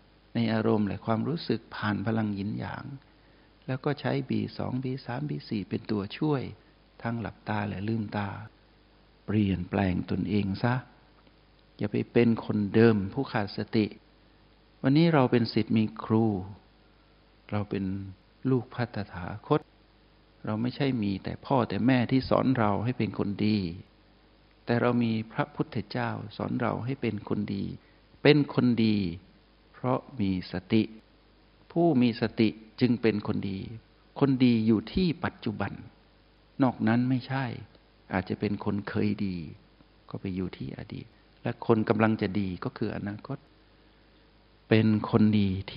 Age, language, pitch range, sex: 60-79, Thai, 105-120 Hz, male